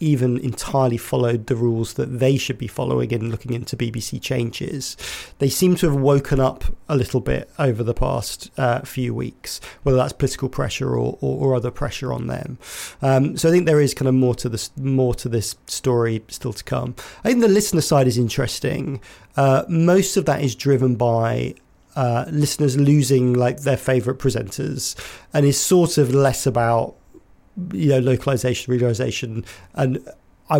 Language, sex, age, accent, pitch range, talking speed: English, male, 40-59, British, 120-140 Hz, 180 wpm